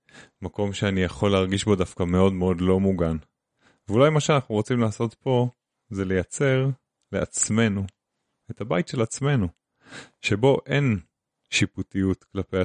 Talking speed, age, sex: 130 wpm, 30-49, male